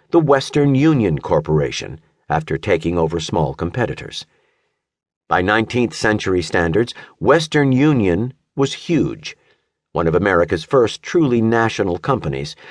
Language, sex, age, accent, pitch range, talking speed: English, male, 50-69, American, 95-140 Hz, 115 wpm